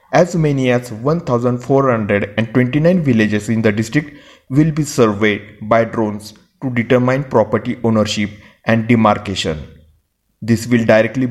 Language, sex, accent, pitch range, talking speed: Marathi, male, native, 105-125 Hz, 115 wpm